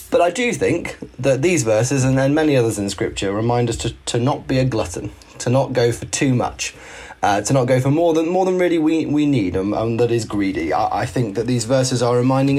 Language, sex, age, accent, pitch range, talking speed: English, male, 30-49, British, 115-145 Hz, 255 wpm